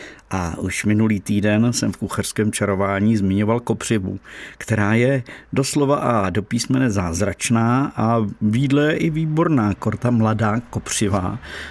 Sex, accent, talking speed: male, native, 125 wpm